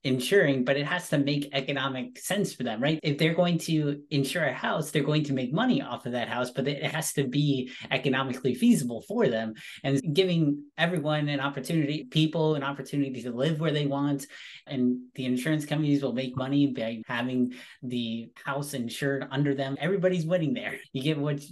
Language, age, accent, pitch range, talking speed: English, 30-49, American, 135-165 Hz, 190 wpm